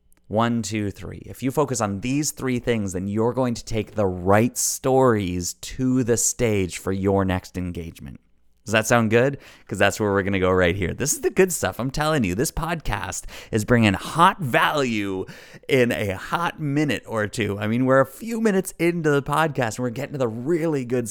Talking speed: 210 wpm